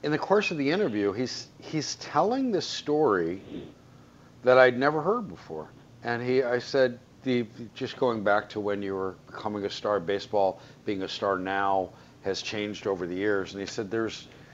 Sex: male